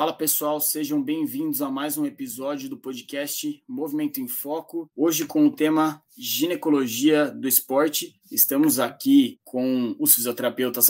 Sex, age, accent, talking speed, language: male, 20-39, Brazilian, 140 wpm, Portuguese